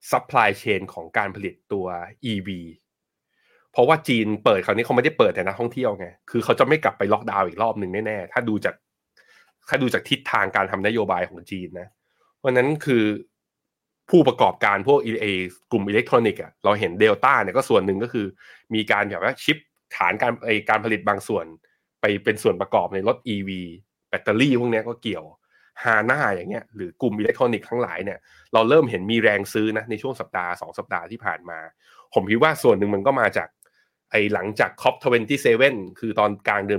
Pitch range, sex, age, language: 100-125 Hz, male, 20-39, Thai